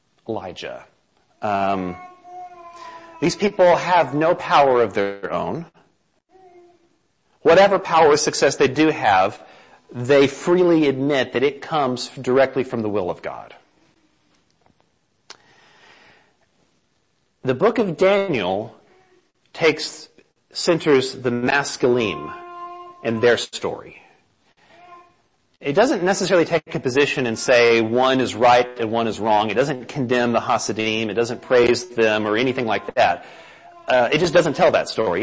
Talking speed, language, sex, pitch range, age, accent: 130 wpm, English, male, 125-200 Hz, 40-59, American